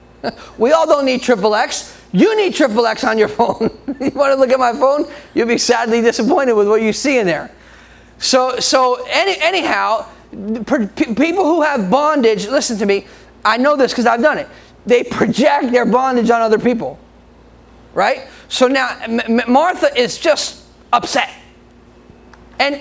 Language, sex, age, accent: English, male, 30-49, American